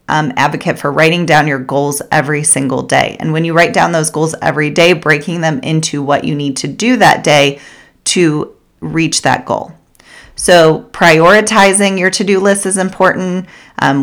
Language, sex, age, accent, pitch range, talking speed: English, female, 30-49, American, 150-190 Hz, 175 wpm